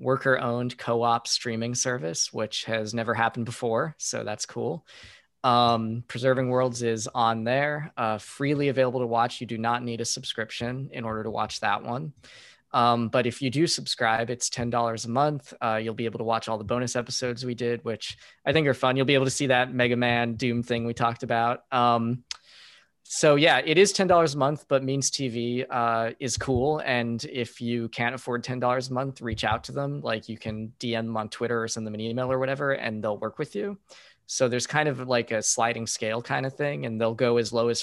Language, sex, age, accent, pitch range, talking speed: English, male, 20-39, American, 115-130 Hz, 215 wpm